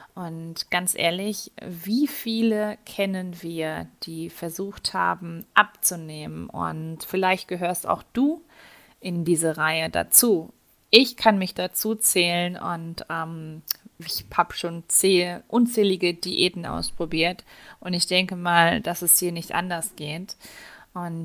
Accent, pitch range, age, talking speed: German, 165-200 Hz, 30-49, 125 wpm